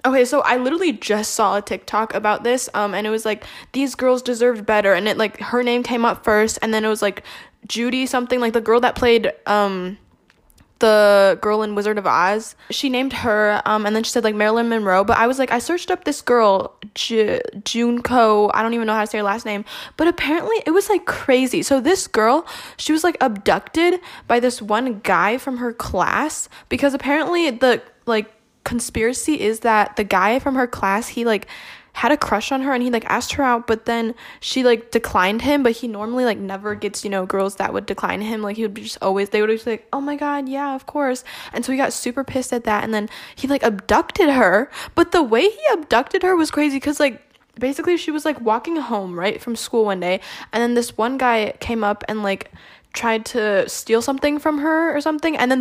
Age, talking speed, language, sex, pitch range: 10-29, 230 wpm, English, female, 215-275 Hz